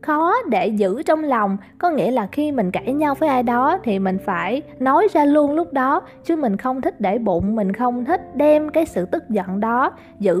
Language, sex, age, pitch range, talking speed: Vietnamese, female, 20-39, 195-285 Hz, 225 wpm